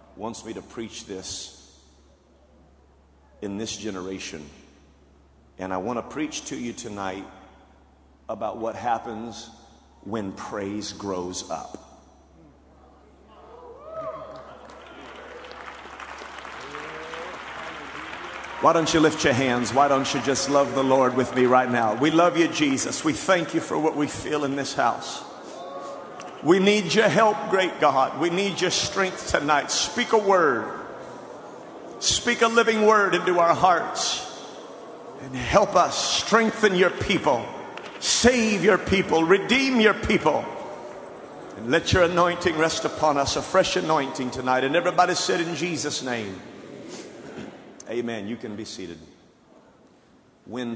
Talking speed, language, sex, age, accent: 130 wpm, English, male, 50-69, American